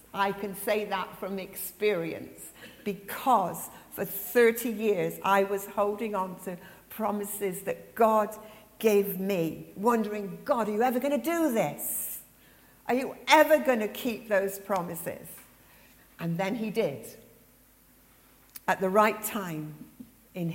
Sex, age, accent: female, 50-69, British